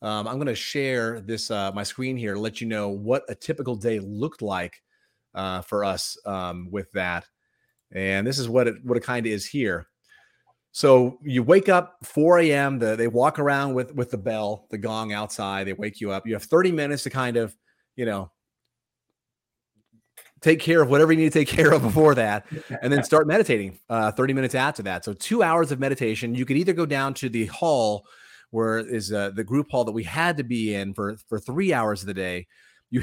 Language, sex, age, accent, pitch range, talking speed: English, male, 30-49, American, 105-145 Hz, 215 wpm